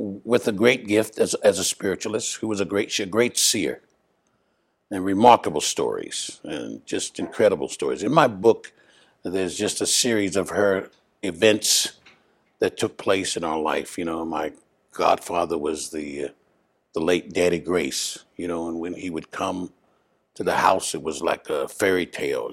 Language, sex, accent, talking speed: English, male, American, 175 wpm